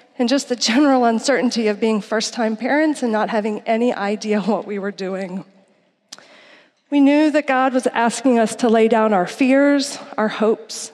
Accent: American